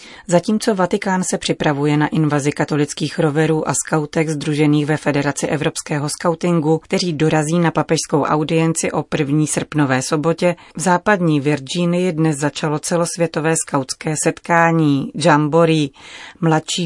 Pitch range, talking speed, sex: 145-170 Hz, 120 wpm, female